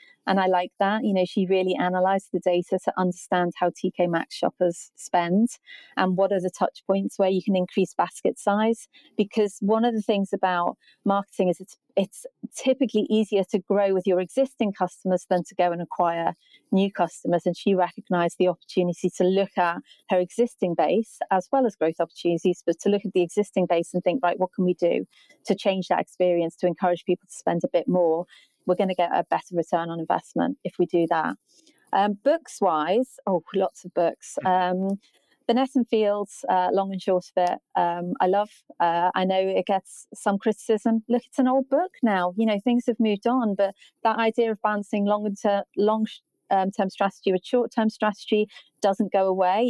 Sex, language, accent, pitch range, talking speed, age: female, English, British, 180-215 Hz, 195 wpm, 30-49